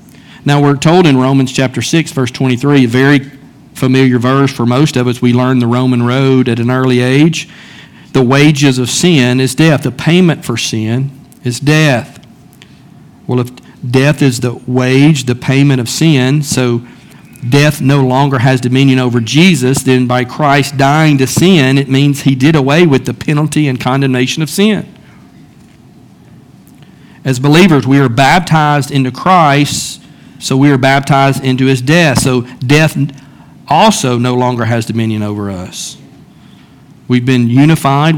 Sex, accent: male, American